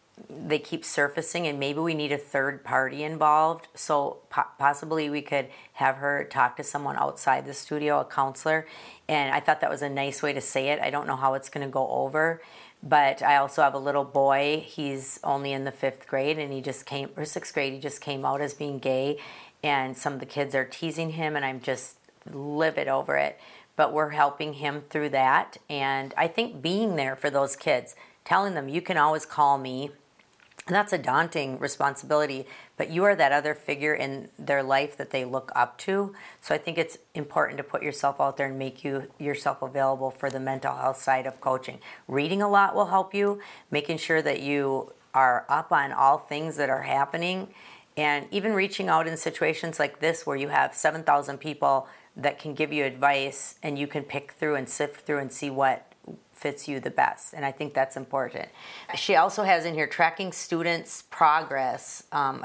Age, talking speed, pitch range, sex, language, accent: 40-59, 205 wpm, 135-155 Hz, female, English, American